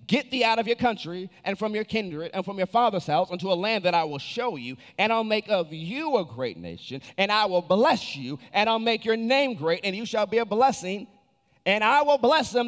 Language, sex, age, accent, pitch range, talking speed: English, male, 30-49, American, 140-215 Hz, 250 wpm